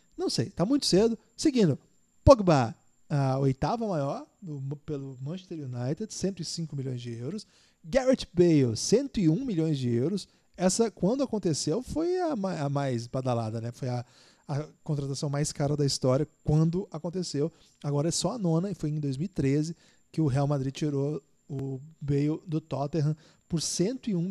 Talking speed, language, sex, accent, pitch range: 150 wpm, Portuguese, male, Brazilian, 140-190 Hz